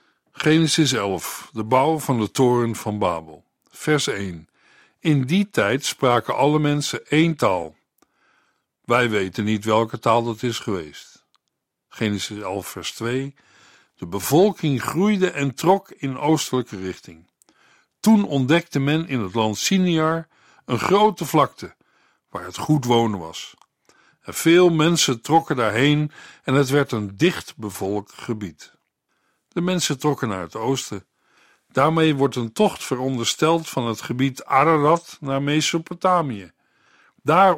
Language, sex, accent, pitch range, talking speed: Dutch, male, Dutch, 115-160 Hz, 135 wpm